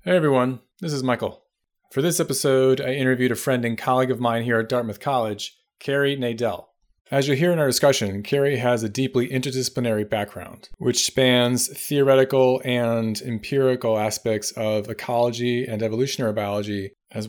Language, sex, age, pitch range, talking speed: English, male, 30-49, 110-130 Hz, 160 wpm